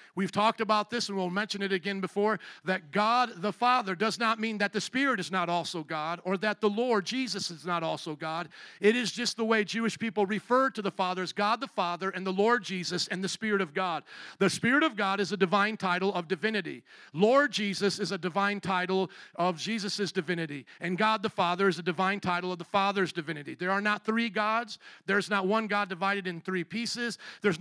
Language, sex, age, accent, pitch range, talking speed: English, male, 50-69, American, 180-215 Hz, 220 wpm